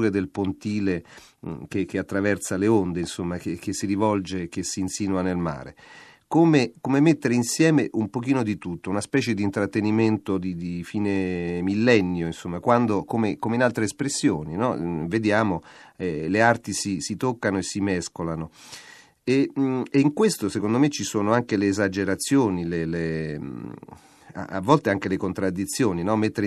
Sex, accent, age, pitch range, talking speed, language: male, native, 40-59, 95-110 Hz, 165 wpm, Italian